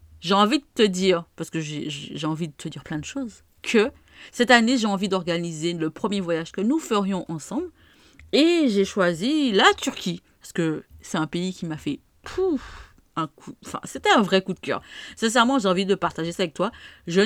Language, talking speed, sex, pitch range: French, 205 wpm, female, 165-220 Hz